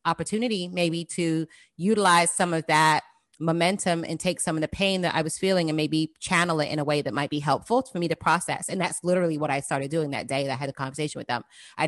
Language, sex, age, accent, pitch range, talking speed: English, female, 30-49, American, 155-185 Hz, 255 wpm